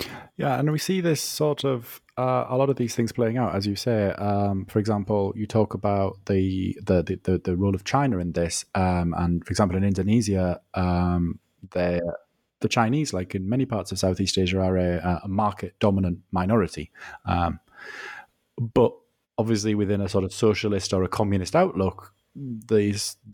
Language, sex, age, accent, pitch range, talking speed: English, male, 20-39, British, 90-110 Hz, 170 wpm